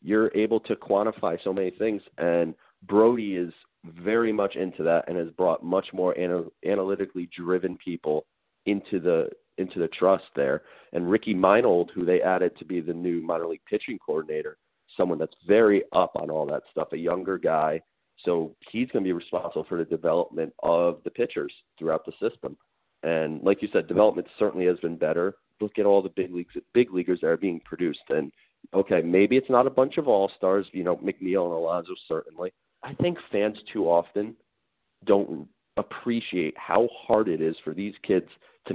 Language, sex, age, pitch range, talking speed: English, male, 30-49, 85-115 Hz, 185 wpm